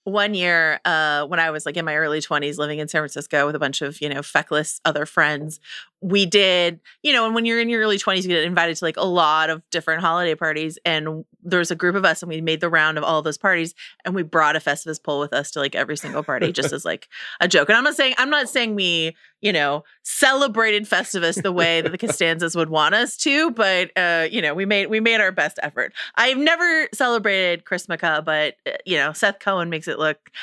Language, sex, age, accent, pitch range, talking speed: English, female, 30-49, American, 155-205 Hz, 245 wpm